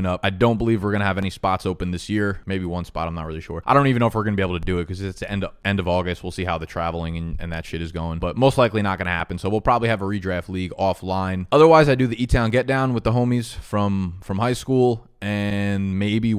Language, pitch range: English, 95-115 Hz